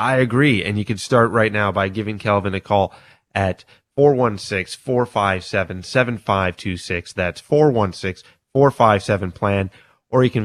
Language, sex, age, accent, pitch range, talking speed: English, male, 30-49, American, 95-115 Hz, 120 wpm